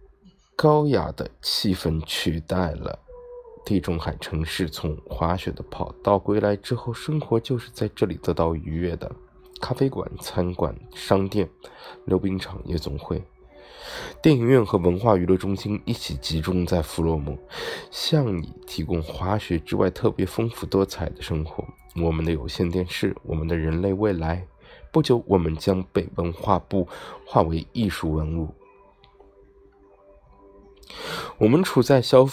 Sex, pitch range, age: male, 85-110 Hz, 20-39